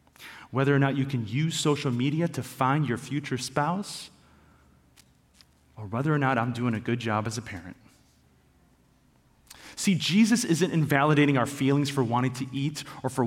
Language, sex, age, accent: English, male, 30-49, American